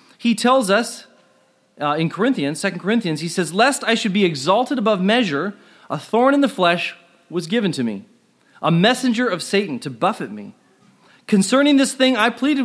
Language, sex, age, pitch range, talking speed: English, male, 40-59, 175-235 Hz, 180 wpm